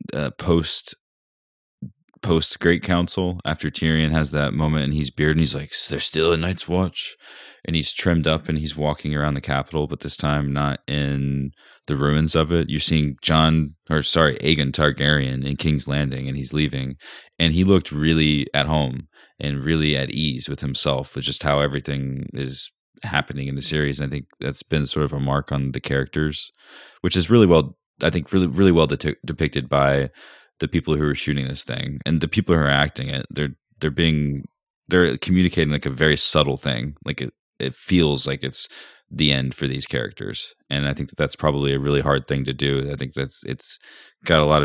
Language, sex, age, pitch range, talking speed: English, male, 20-39, 70-80 Hz, 205 wpm